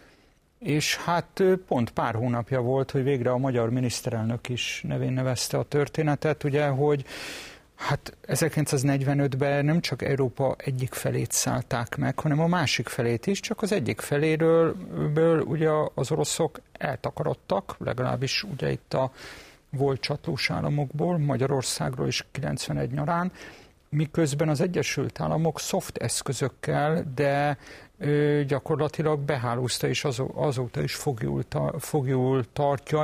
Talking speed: 120 wpm